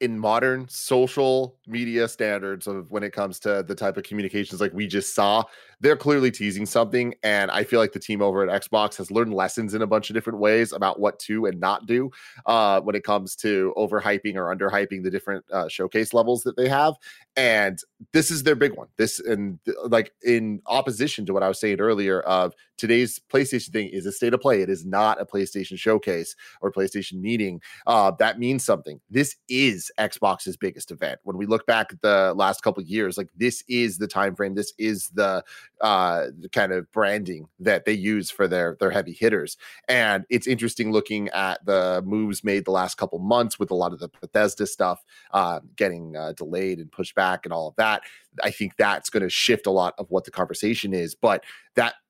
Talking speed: 210 wpm